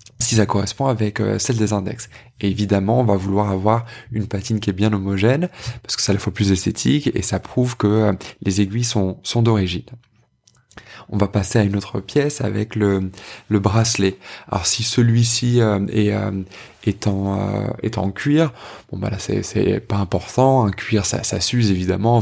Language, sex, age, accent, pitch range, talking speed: French, male, 20-39, French, 95-110 Hz, 185 wpm